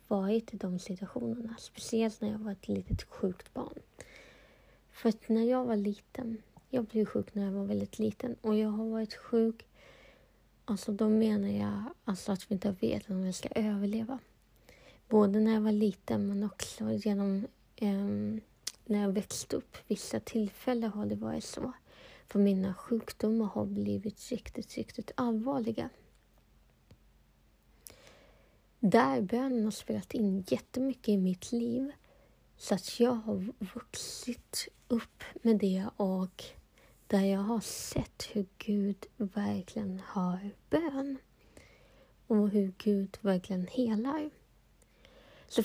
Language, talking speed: Swedish, 135 wpm